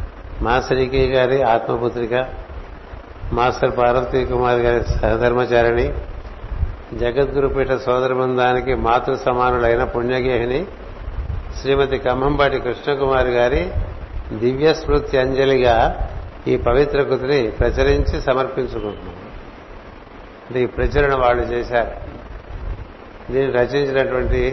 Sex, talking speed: male, 70 wpm